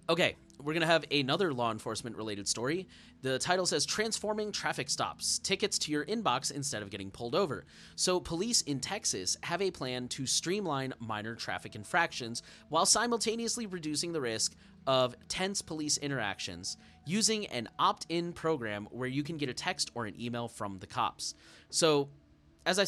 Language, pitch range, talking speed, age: English, 120-165 Hz, 170 wpm, 30-49